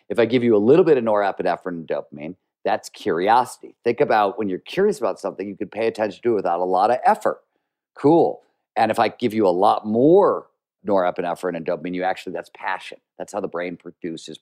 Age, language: 50-69, English